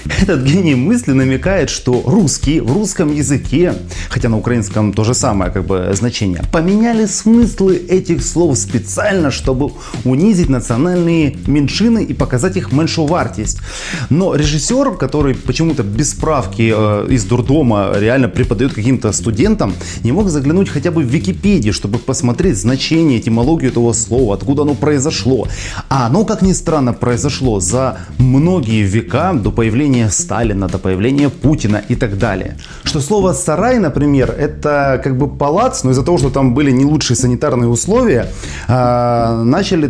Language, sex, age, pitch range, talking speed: Russian, male, 30-49, 115-155 Hz, 145 wpm